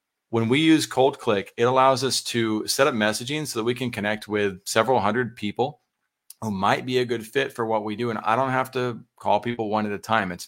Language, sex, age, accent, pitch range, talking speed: English, male, 30-49, American, 100-120 Hz, 245 wpm